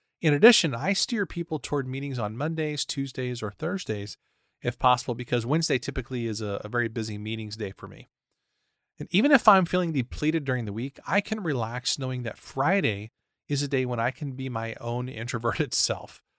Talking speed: 190 wpm